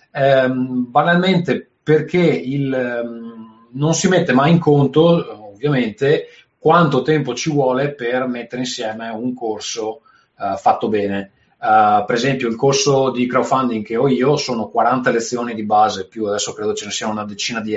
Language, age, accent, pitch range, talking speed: Italian, 30-49, native, 110-145 Hz, 160 wpm